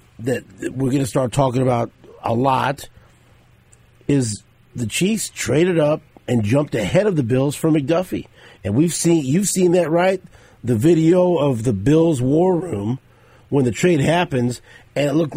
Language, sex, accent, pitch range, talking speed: English, male, American, 115-160 Hz, 170 wpm